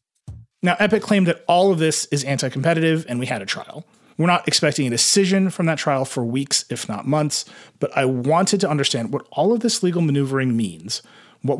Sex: male